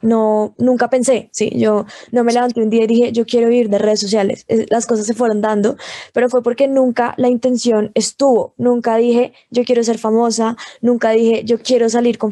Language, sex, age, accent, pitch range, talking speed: Spanish, female, 10-29, Colombian, 230-270 Hz, 205 wpm